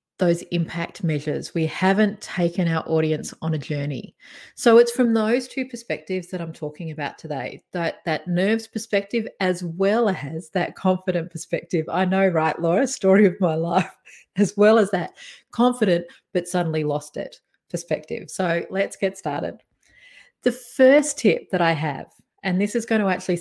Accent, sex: Australian, female